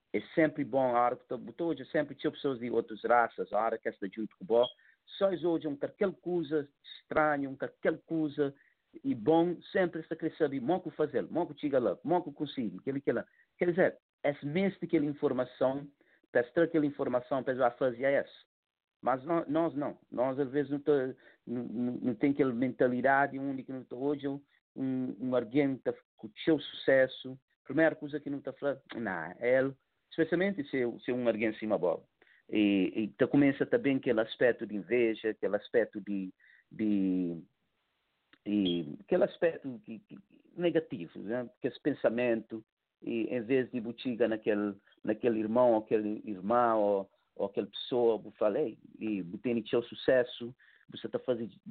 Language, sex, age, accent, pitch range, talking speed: English, male, 50-69, Brazilian, 115-150 Hz, 160 wpm